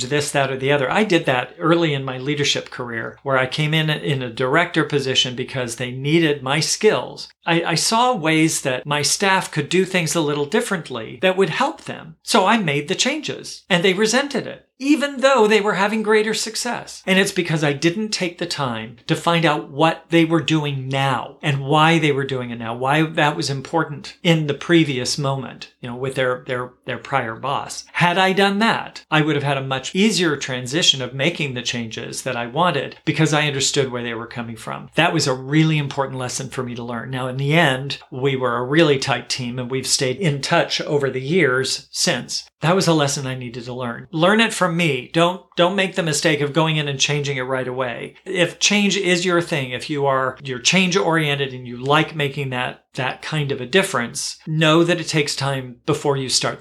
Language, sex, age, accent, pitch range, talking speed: English, male, 50-69, American, 130-170 Hz, 220 wpm